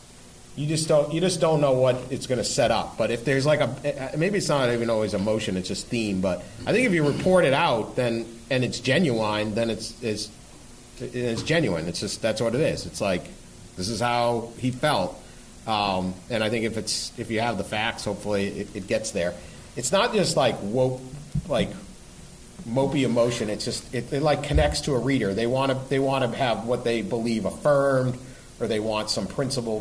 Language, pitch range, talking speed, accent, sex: English, 105-130 Hz, 215 wpm, American, male